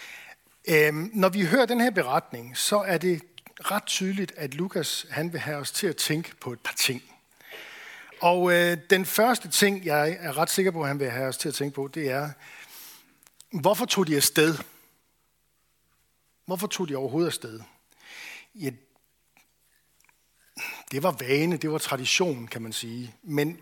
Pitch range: 135-180 Hz